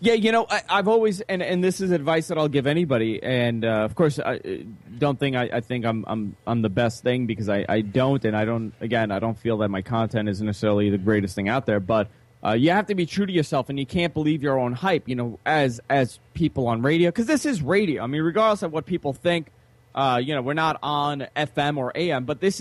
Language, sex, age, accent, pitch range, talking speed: English, male, 30-49, American, 120-175 Hz, 255 wpm